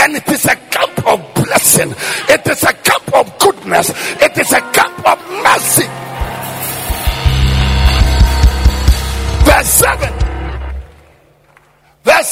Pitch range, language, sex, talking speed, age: 140-210 Hz, English, male, 105 wpm, 50-69